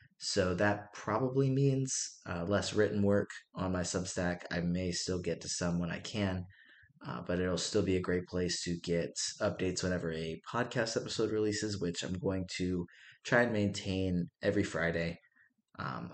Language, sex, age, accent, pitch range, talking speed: English, male, 20-39, American, 85-105 Hz, 170 wpm